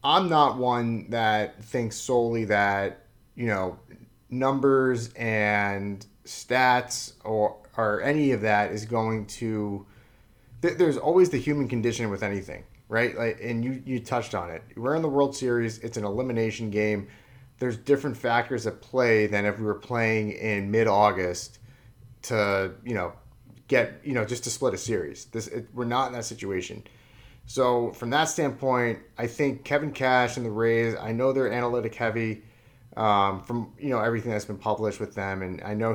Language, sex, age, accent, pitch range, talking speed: English, male, 30-49, American, 110-130 Hz, 175 wpm